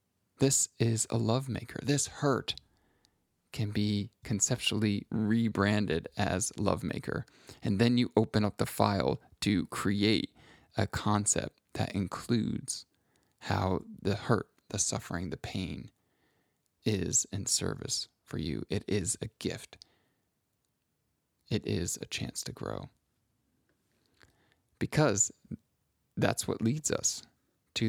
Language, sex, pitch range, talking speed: English, male, 100-115 Hz, 115 wpm